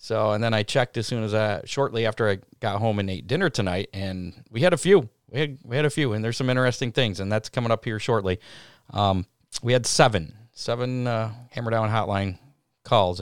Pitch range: 105-135 Hz